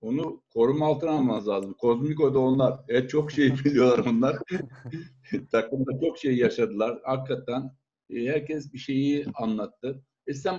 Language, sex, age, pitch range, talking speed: Turkish, male, 60-79, 135-170 Hz, 135 wpm